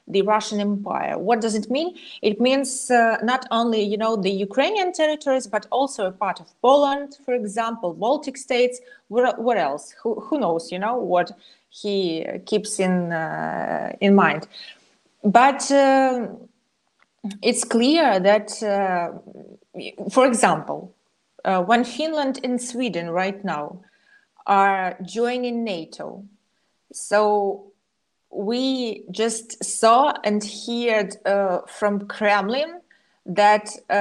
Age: 20-39